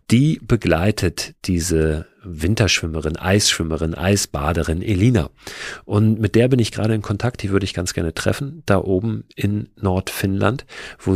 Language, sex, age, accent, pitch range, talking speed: German, male, 40-59, German, 85-110 Hz, 140 wpm